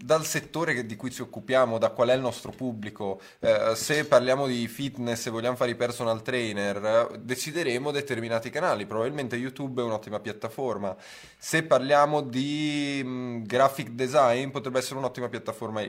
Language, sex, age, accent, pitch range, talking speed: Italian, male, 20-39, native, 110-130 Hz, 160 wpm